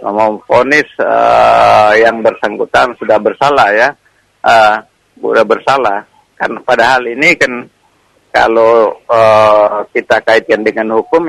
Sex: male